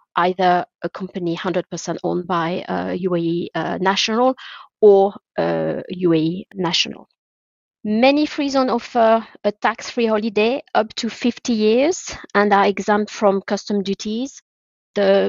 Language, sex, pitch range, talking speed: English, female, 185-215 Hz, 125 wpm